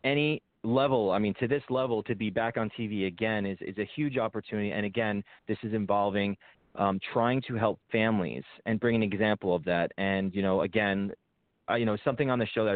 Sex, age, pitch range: male, 30-49, 100-120 Hz